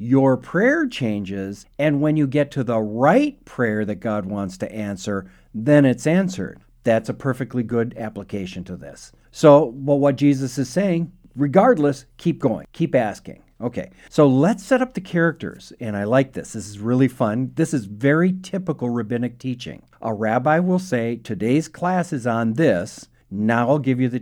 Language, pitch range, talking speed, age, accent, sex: English, 115-150 Hz, 175 wpm, 50-69, American, male